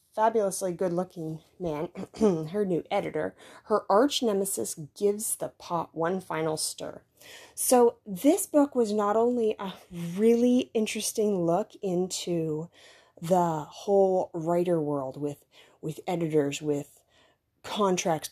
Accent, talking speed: American, 115 wpm